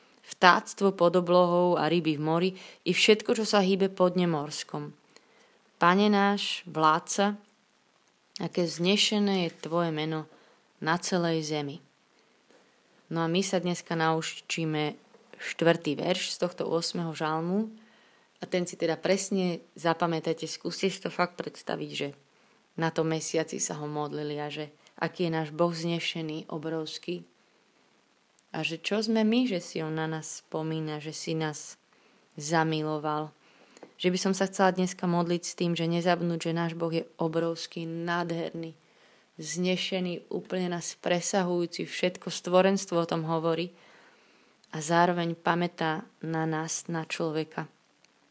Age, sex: 20-39, female